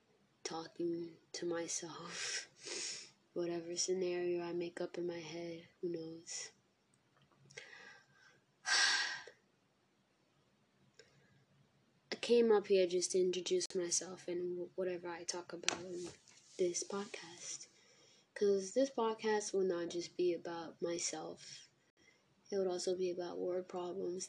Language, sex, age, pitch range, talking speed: English, female, 20-39, 175-190 Hz, 110 wpm